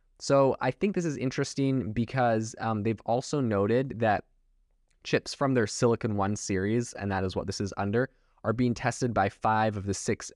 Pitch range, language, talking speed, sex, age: 100-125 Hz, English, 190 wpm, male, 20-39